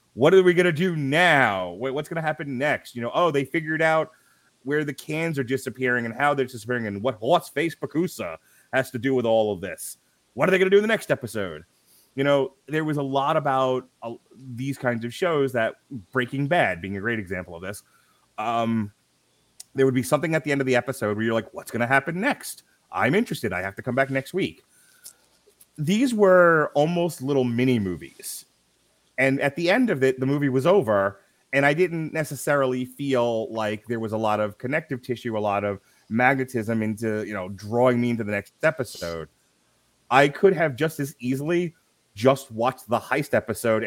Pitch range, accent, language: 110-145 Hz, American, English